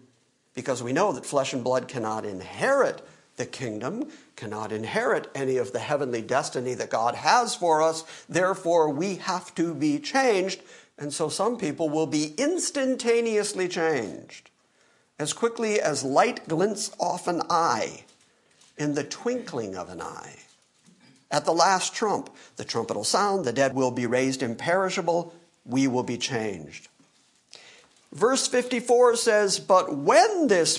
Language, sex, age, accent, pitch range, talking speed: English, male, 50-69, American, 135-190 Hz, 145 wpm